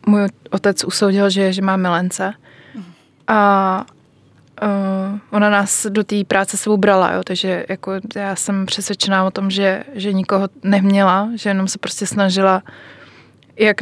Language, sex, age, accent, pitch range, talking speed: Czech, female, 20-39, native, 185-205 Hz, 140 wpm